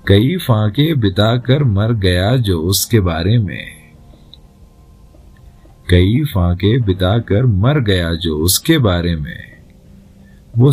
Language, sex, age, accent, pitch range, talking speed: Hindi, male, 40-59, native, 85-125 Hz, 105 wpm